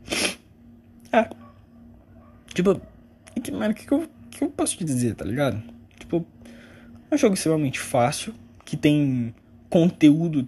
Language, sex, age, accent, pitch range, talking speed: Portuguese, male, 20-39, Brazilian, 110-155 Hz, 120 wpm